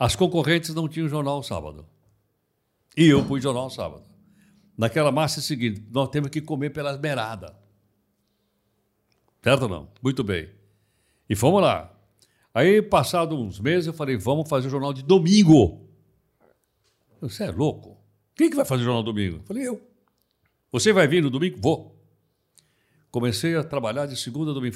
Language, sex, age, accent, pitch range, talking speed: Portuguese, male, 60-79, Brazilian, 115-175 Hz, 165 wpm